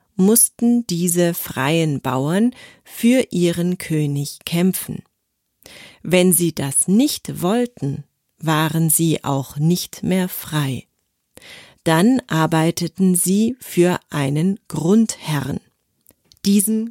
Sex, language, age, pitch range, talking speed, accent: female, German, 40-59, 150-190 Hz, 90 wpm, German